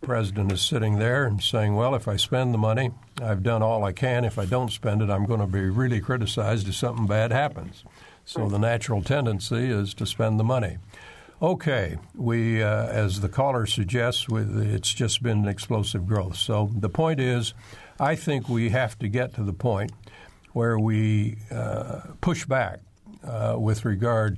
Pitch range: 105-125 Hz